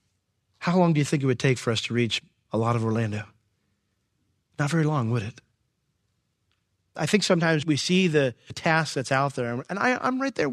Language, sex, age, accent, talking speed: English, male, 40-59, American, 200 wpm